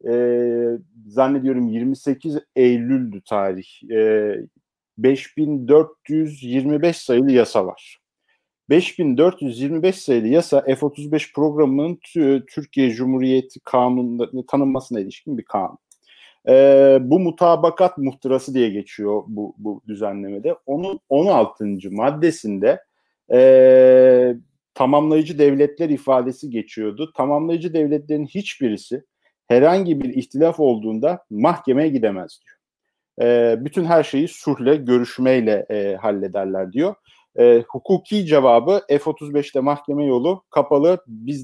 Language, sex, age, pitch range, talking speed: Turkish, male, 50-69, 115-150 Hz, 90 wpm